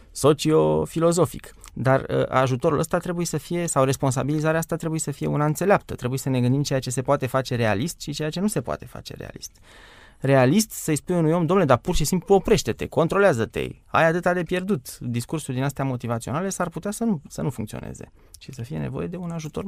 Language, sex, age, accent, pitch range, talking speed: Romanian, male, 20-39, native, 115-155 Hz, 205 wpm